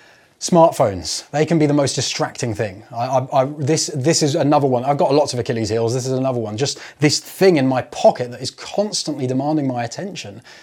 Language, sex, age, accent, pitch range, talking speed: English, male, 20-39, British, 130-165 Hz, 215 wpm